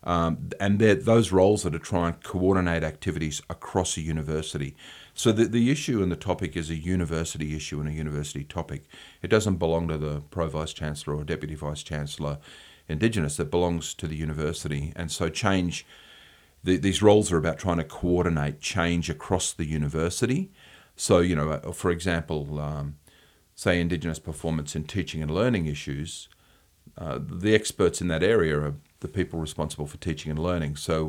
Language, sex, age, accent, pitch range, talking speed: English, male, 40-59, Australian, 75-90 Hz, 170 wpm